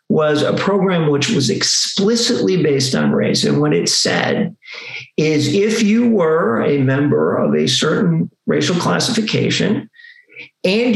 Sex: male